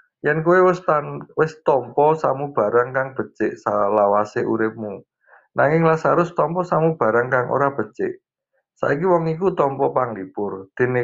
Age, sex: 50-69, male